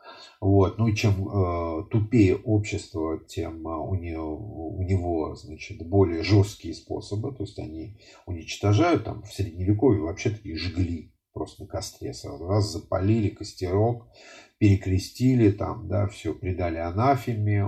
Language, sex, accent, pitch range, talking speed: Russian, male, native, 95-110 Hz, 130 wpm